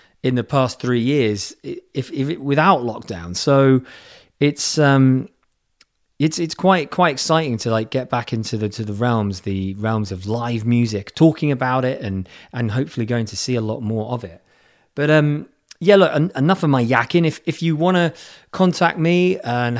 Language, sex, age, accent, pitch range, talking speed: English, male, 30-49, British, 115-155 Hz, 190 wpm